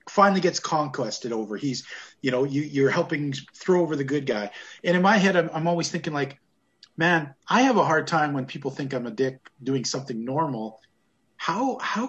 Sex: male